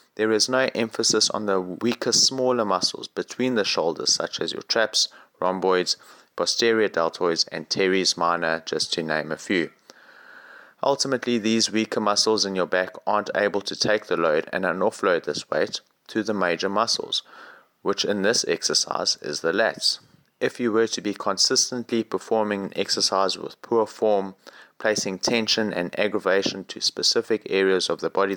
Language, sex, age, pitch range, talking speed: English, male, 30-49, 95-115 Hz, 165 wpm